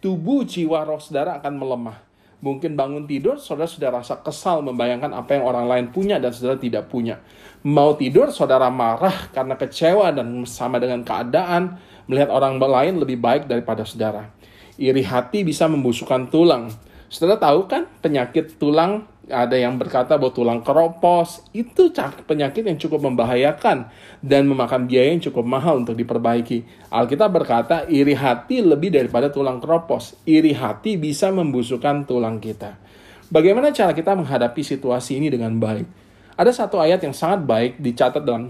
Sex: male